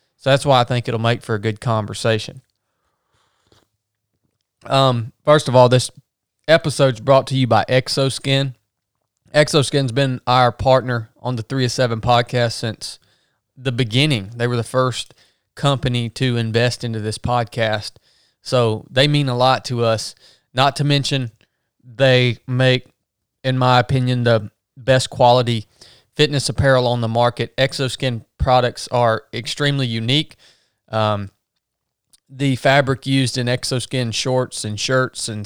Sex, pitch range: male, 115-135 Hz